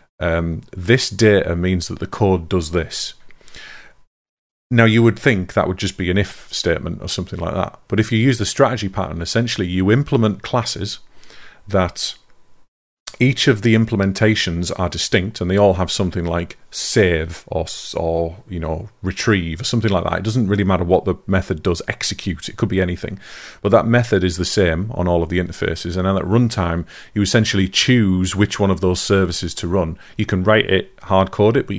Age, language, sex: 30-49, English, male